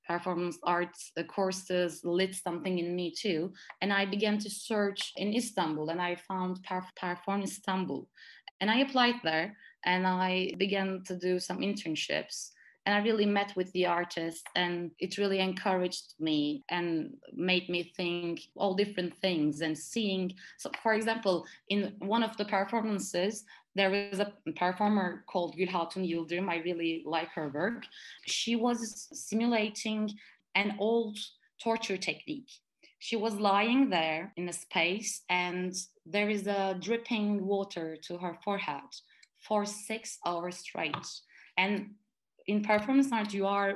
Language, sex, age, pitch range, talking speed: Turkish, female, 20-39, 180-215 Hz, 145 wpm